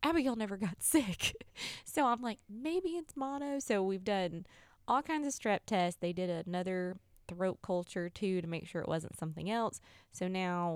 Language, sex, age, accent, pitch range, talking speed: English, female, 20-39, American, 155-195 Hz, 190 wpm